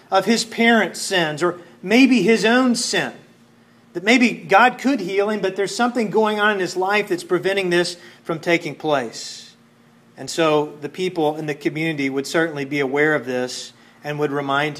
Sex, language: male, English